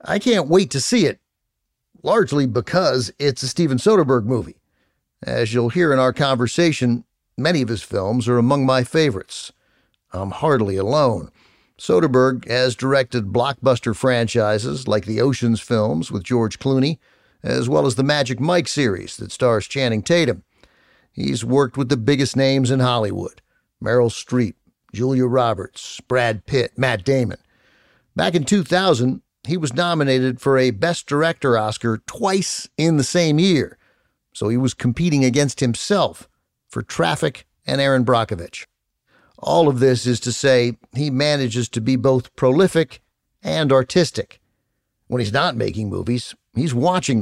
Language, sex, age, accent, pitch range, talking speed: English, male, 50-69, American, 115-145 Hz, 150 wpm